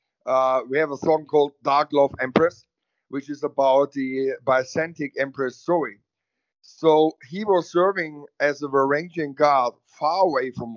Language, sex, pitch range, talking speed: English, male, 130-160 Hz, 150 wpm